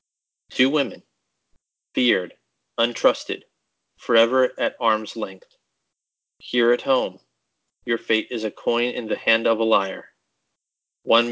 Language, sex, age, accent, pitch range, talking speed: English, male, 30-49, American, 115-150 Hz, 120 wpm